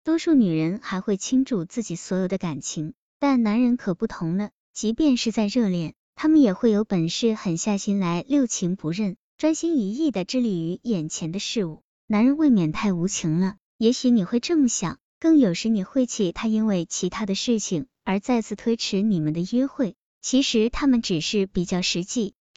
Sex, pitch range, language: male, 185-240 Hz, Chinese